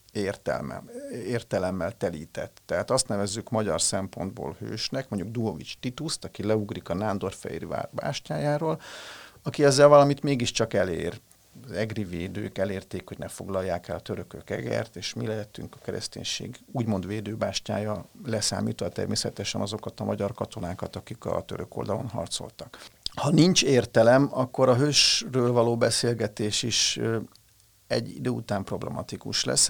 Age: 50-69